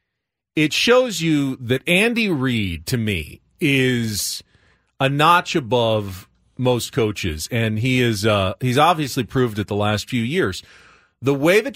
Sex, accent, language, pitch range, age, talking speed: male, American, English, 120-170 Hz, 40-59, 150 wpm